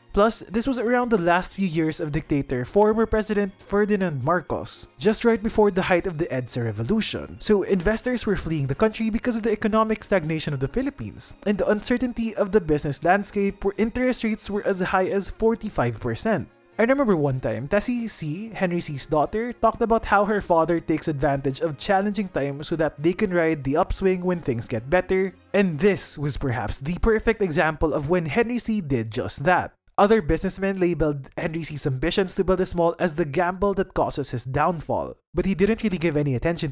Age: 20-39